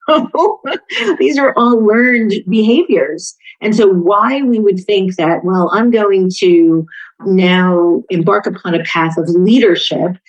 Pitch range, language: 160-205 Hz, English